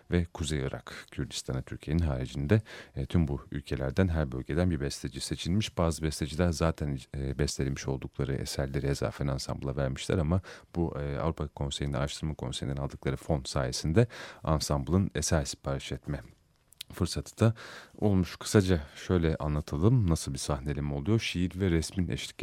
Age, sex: 40-59, male